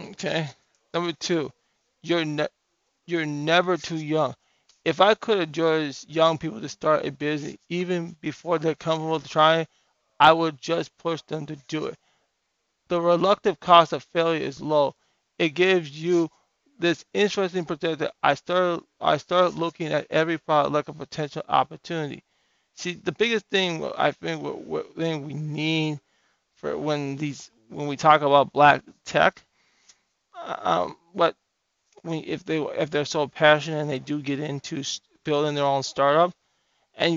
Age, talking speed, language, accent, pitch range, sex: 20-39, 155 wpm, English, American, 145-170 Hz, male